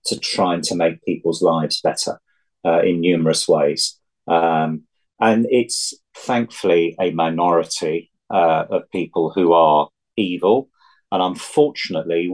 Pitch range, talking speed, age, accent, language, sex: 80-95 Hz, 120 wpm, 40-59, British, English, male